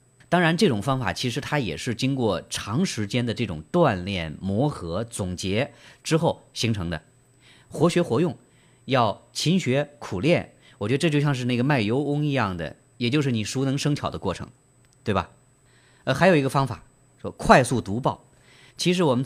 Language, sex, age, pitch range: Chinese, male, 30-49, 115-150 Hz